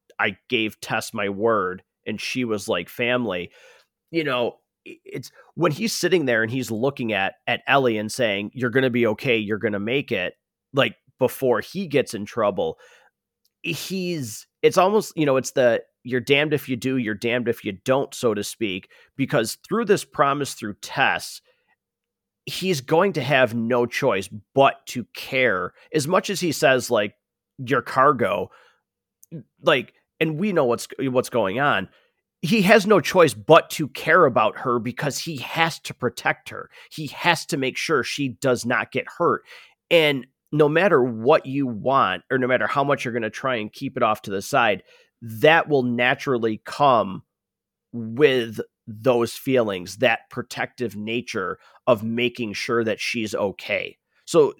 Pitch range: 115-155 Hz